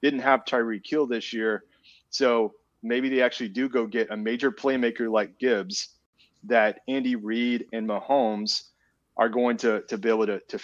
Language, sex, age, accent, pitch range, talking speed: English, male, 30-49, American, 110-140 Hz, 175 wpm